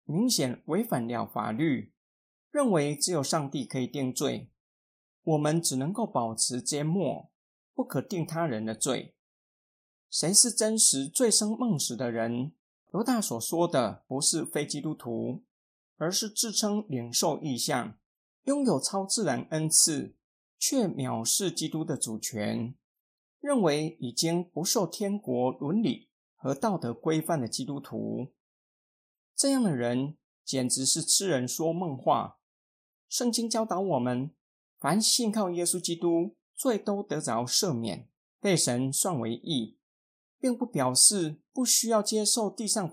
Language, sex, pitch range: Chinese, male, 130-210 Hz